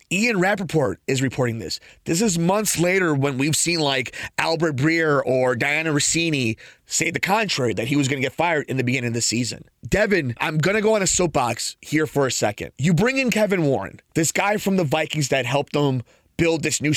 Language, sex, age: English, male, 30-49